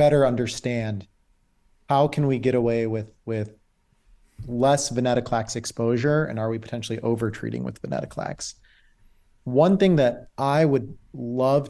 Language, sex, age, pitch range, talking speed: English, male, 30-49, 110-130 Hz, 130 wpm